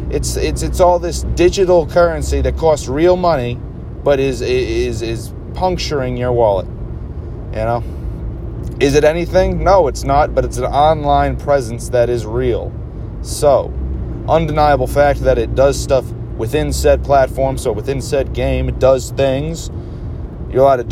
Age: 30-49